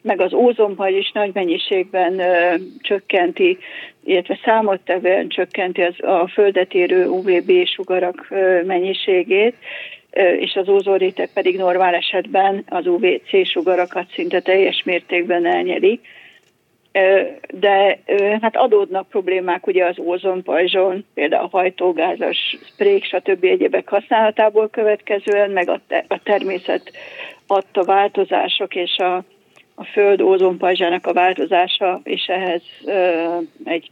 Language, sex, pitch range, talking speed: Hungarian, female, 180-215 Hz, 115 wpm